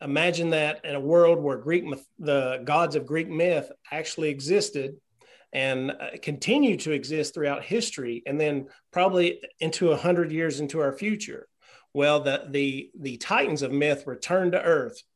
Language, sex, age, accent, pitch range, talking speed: English, male, 40-59, American, 135-170 Hz, 160 wpm